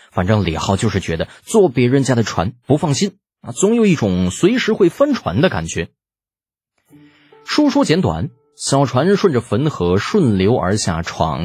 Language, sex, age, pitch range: Chinese, male, 20-39, 95-140 Hz